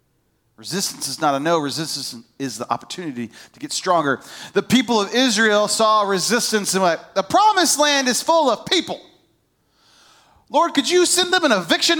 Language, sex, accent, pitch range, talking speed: English, male, American, 145-225 Hz, 170 wpm